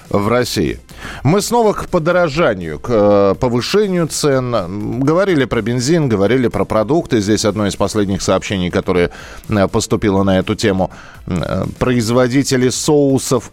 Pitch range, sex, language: 110-155 Hz, male, Russian